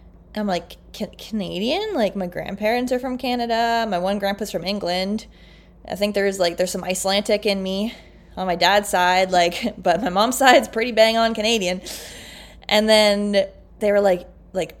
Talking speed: 170 wpm